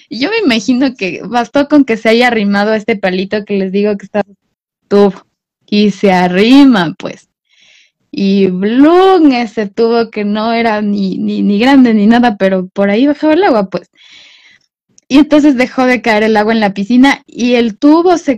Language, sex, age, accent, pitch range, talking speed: Spanish, female, 20-39, Mexican, 200-245 Hz, 185 wpm